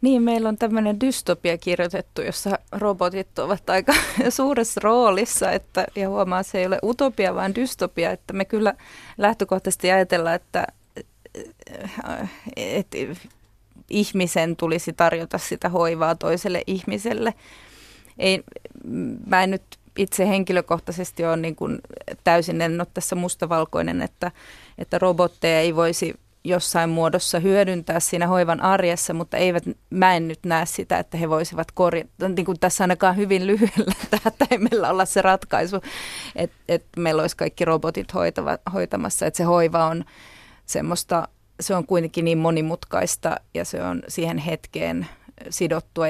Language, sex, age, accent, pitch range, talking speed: Finnish, female, 30-49, native, 165-195 Hz, 135 wpm